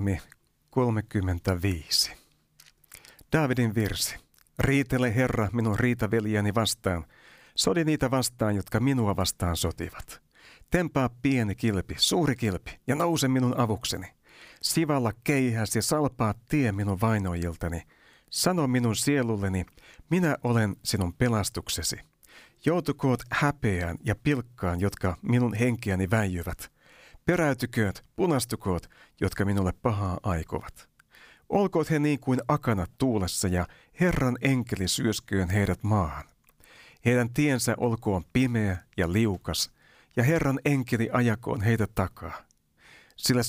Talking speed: 105 wpm